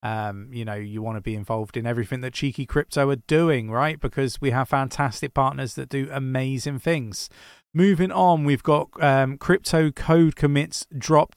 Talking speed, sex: 180 wpm, male